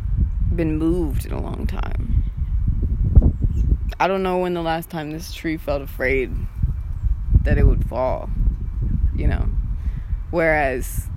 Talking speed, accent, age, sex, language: 130 wpm, American, 20-39, female, English